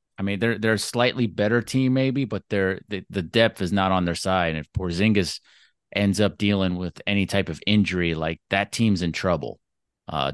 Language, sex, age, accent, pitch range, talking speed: English, male, 30-49, American, 95-110 Hz, 210 wpm